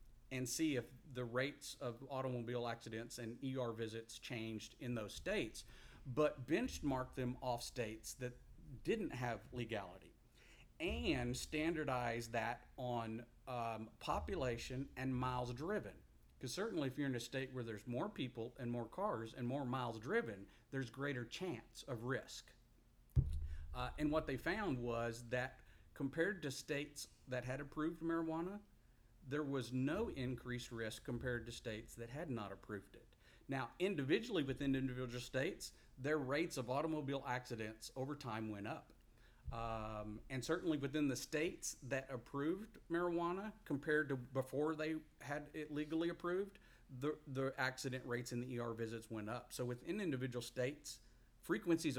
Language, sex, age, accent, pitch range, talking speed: English, male, 50-69, American, 115-140 Hz, 150 wpm